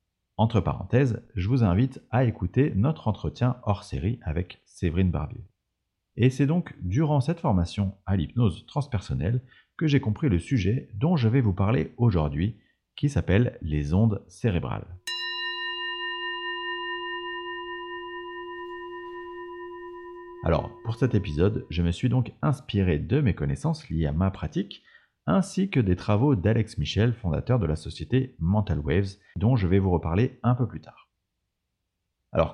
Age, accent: 40-59, French